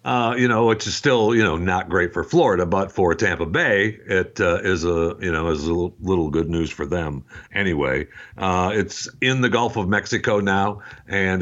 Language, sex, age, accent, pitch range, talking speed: English, male, 60-79, American, 85-110 Hz, 205 wpm